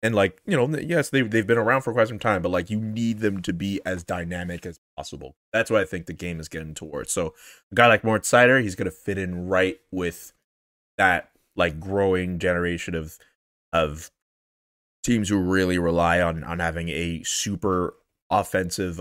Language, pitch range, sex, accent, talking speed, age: English, 90-130 Hz, male, American, 195 wpm, 20-39